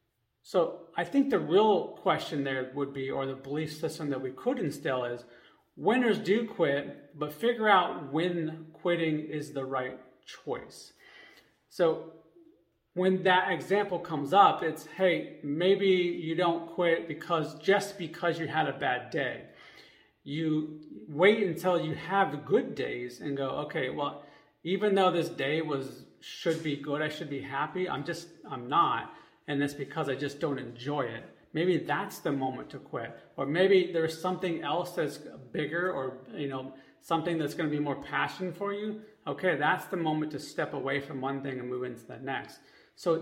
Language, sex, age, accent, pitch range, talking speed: English, male, 40-59, American, 140-180 Hz, 175 wpm